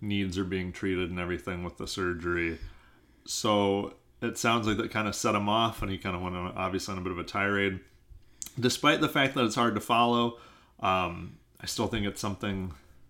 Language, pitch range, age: English, 90-105 Hz, 30-49